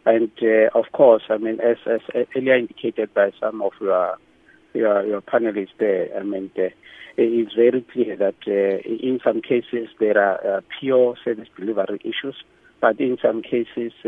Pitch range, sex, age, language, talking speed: 105-125 Hz, male, 50-69, English, 180 wpm